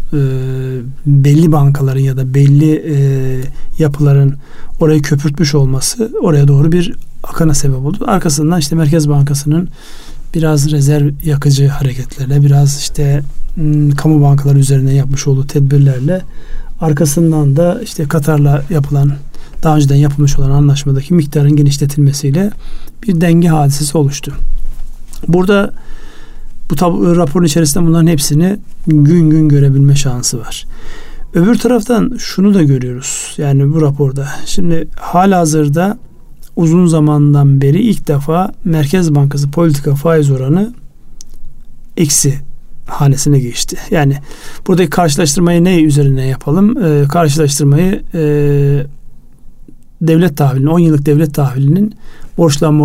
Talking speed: 115 wpm